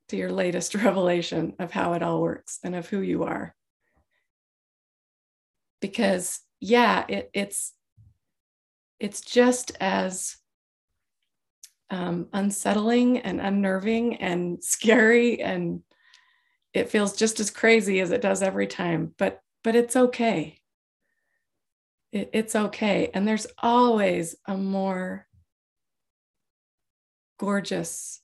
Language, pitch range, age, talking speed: English, 170-215 Hz, 30-49, 100 wpm